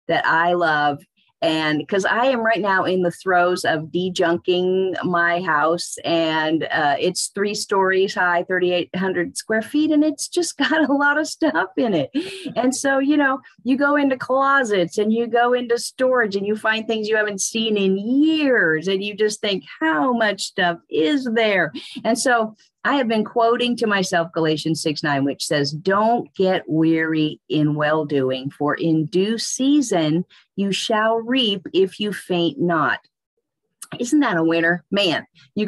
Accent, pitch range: American, 170-235 Hz